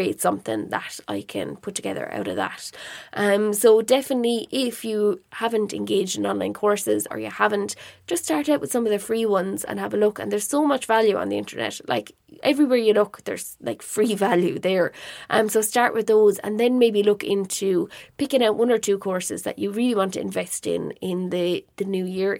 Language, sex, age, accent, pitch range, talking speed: English, female, 20-39, Irish, 190-220 Hz, 215 wpm